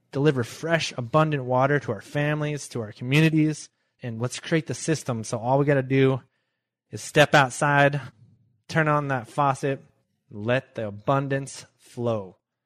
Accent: American